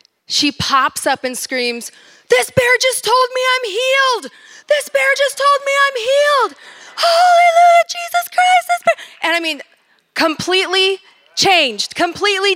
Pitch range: 230-310 Hz